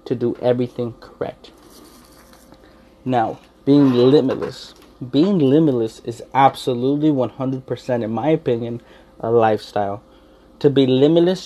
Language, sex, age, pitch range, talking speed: English, male, 20-39, 120-150 Hz, 105 wpm